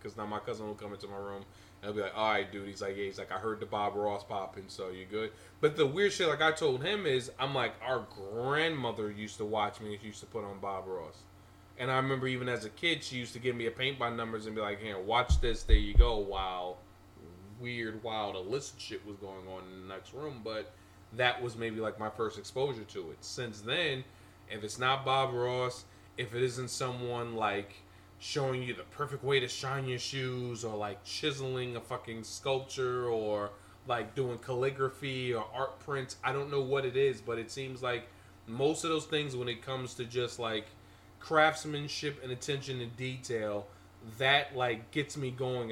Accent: American